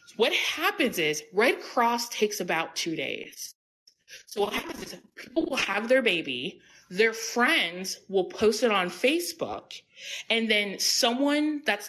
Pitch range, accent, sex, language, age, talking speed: 180-260 Hz, American, female, English, 20-39, 145 wpm